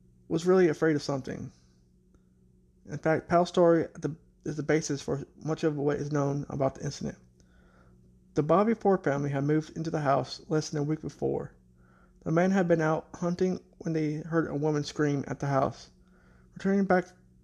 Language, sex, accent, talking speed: English, male, American, 180 wpm